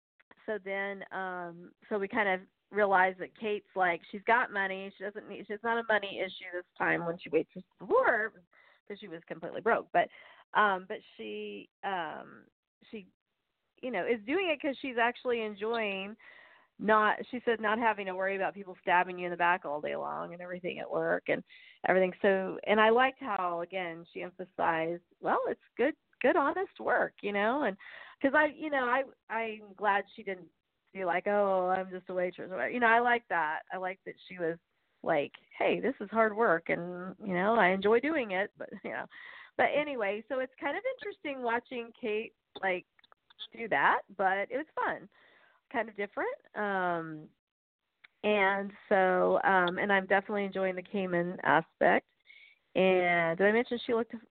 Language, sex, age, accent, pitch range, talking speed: English, female, 40-59, American, 185-230 Hz, 185 wpm